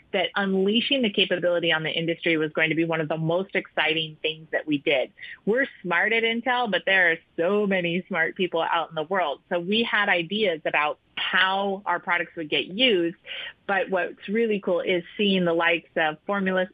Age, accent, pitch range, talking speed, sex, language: 30-49, American, 170-205 Hz, 200 wpm, female, English